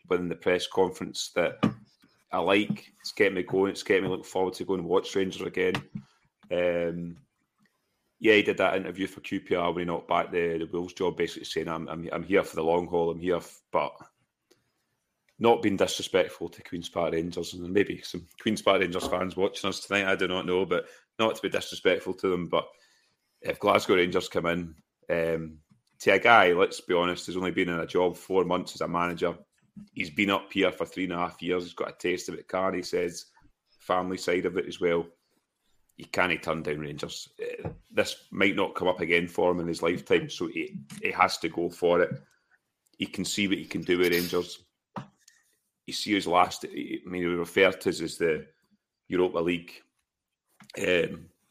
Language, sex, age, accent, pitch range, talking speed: English, male, 30-49, British, 85-95 Hz, 205 wpm